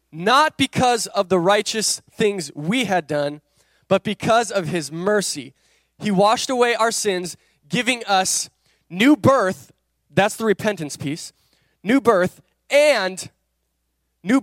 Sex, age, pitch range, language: male, 20-39, 165-225 Hz, English